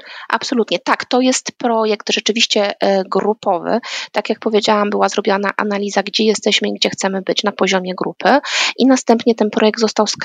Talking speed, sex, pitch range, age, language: 165 wpm, female, 200-240 Hz, 20-39, Polish